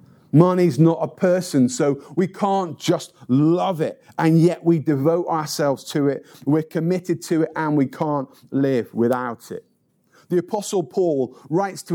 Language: English